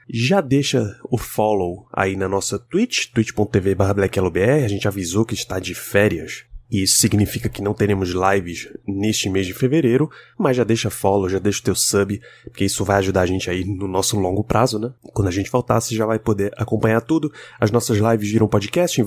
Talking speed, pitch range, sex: 200 wpm, 100-120 Hz, male